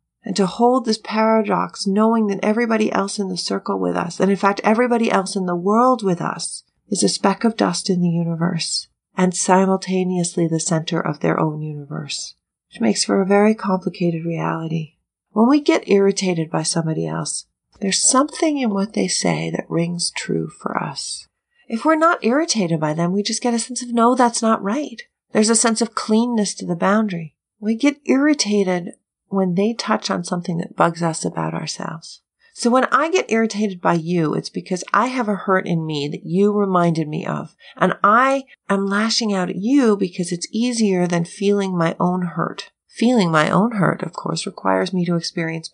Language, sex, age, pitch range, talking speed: English, female, 40-59, 170-225 Hz, 195 wpm